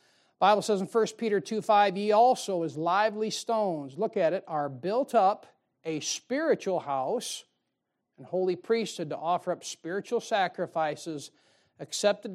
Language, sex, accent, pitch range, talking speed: English, male, American, 170-225 Hz, 145 wpm